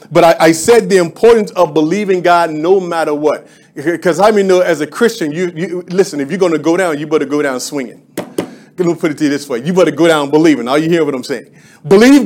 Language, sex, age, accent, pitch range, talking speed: English, male, 40-59, American, 165-205 Hz, 260 wpm